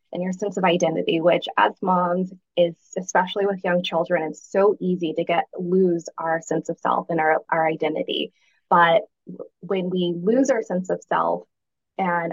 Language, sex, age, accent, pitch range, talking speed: English, female, 20-39, American, 170-195 Hz, 175 wpm